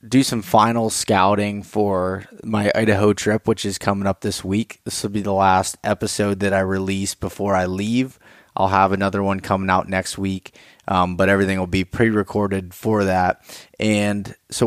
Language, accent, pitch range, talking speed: English, American, 95-110 Hz, 180 wpm